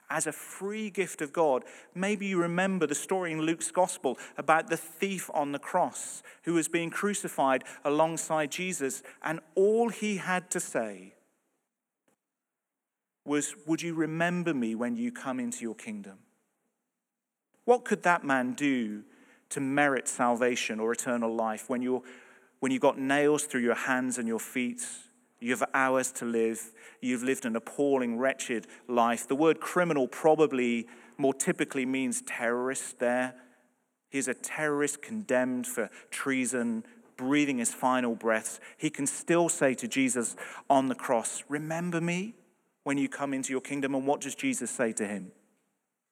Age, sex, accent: 40-59, male, British